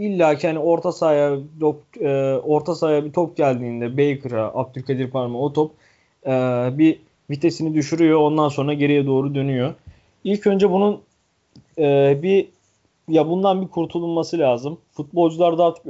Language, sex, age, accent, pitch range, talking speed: Turkish, male, 30-49, native, 135-170 Hz, 140 wpm